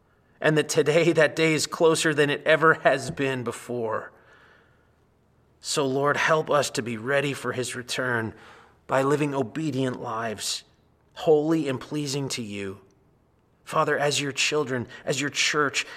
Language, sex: English, male